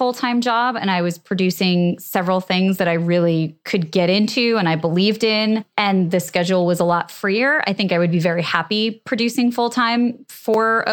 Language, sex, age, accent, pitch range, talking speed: English, female, 20-39, American, 180-220 Hz, 190 wpm